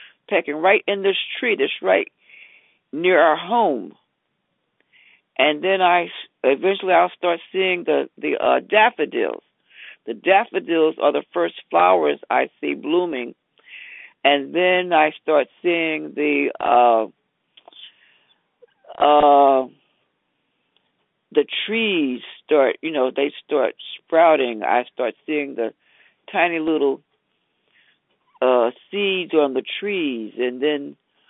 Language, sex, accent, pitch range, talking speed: English, female, American, 145-195 Hz, 115 wpm